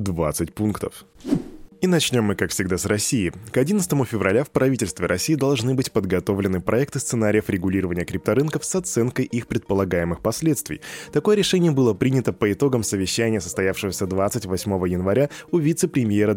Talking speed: 145 wpm